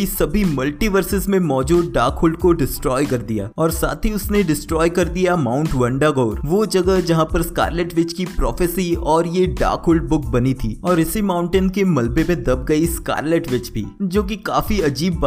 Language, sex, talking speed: Hindi, male, 105 wpm